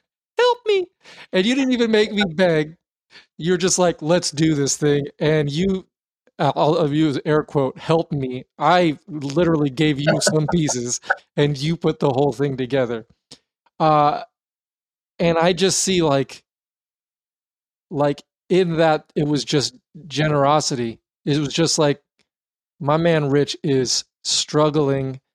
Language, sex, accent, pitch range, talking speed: English, male, American, 140-165 Hz, 140 wpm